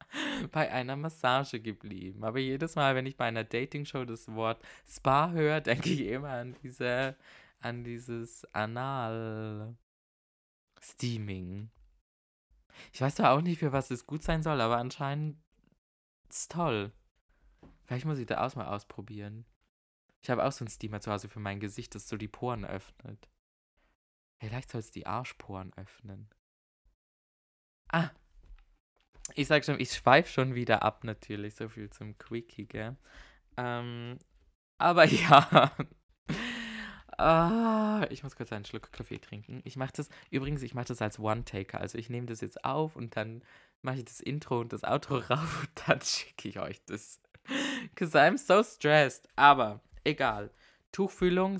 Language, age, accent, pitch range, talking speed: German, 20-39, German, 105-140 Hz, 155 wpm